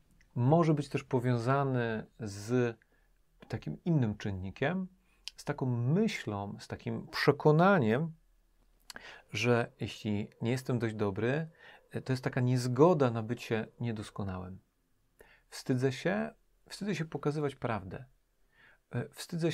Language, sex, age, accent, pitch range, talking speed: Polish, male, 40-59, native, 110-150 Hz, 105 wpm